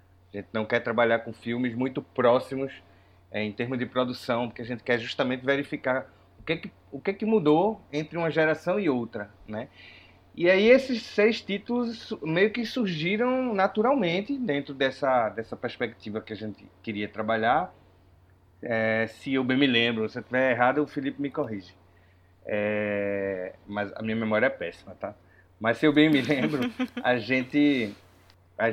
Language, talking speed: Portuguese, 170 wpm